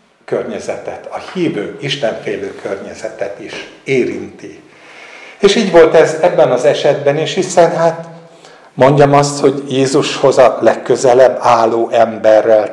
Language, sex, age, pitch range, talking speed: Hungarian, male, 60-79, 120-165 Hz, 120 wpm